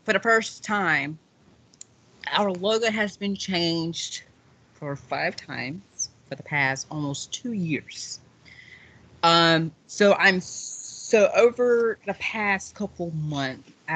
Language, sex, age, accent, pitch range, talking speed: English, female, 30-49, American, 130-175 Hz, 115 wpm